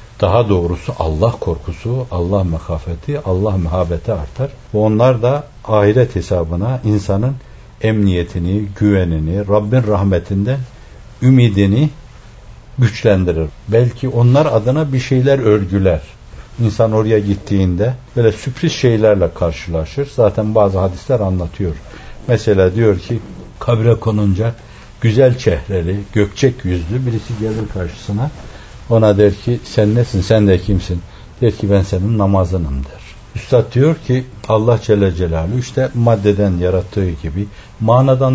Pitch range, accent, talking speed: 95-120 Hz, native, 115 wpm